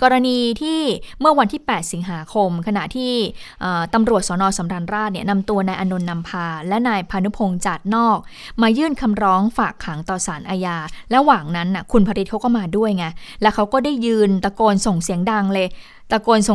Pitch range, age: 185-225 Hz, 20-39